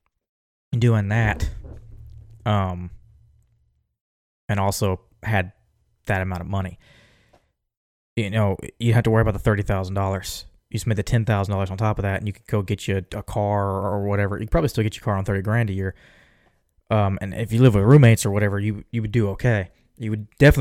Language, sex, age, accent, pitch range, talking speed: English, male, 20-39, American, 95-115 Hz, 205 wpm